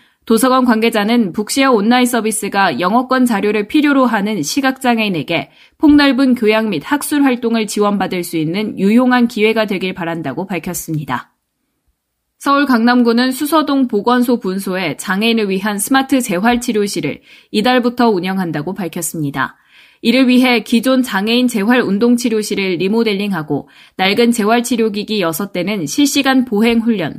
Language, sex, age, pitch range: Korean, female, 20-39, 195-250 Hz